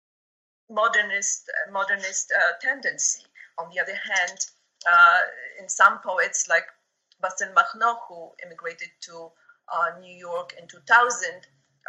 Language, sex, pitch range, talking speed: English, female, 165-230 Hz, 120 wpm